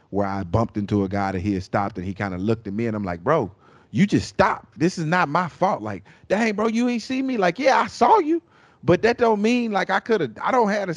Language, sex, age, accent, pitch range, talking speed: English, male, 30-49, American, 125-190 Hz, 290 wpm